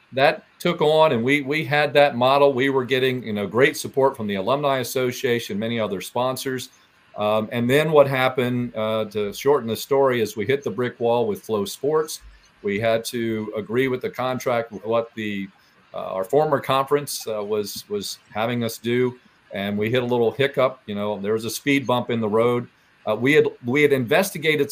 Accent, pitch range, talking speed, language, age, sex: American, 105-135 Hz, 200 wpm, English, 40-59, male